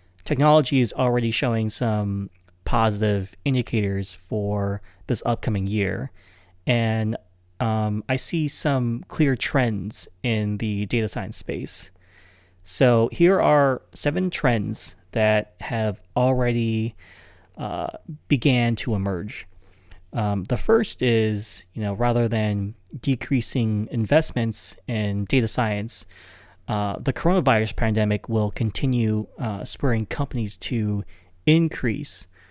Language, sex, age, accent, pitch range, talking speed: English, male, 30-49, American, 100-125 Hz, 110 wpm